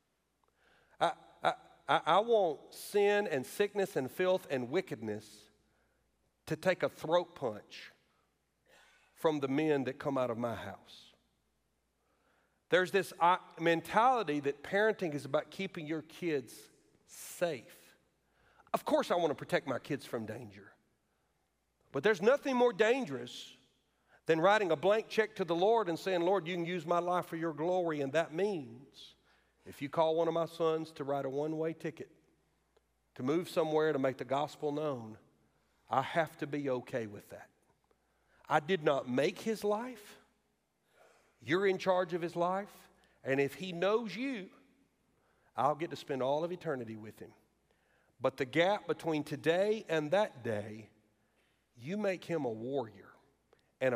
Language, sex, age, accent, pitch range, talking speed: English, male, 50-69, American, 135-185 Hz, 155 wpm